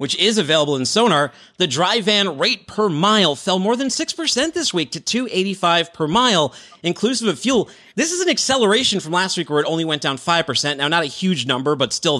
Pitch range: 125-185 Hz